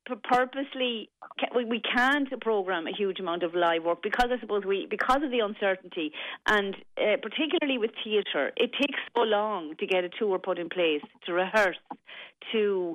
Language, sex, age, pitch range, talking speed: English, female, 40-59, 170-215 Hz, 170 wpm